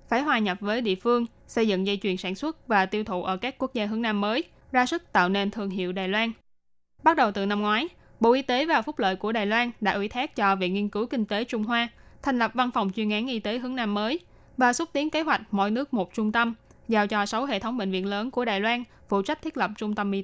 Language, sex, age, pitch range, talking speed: Vietnamese, female, 10-29, 205-245 Hz, 280 wpm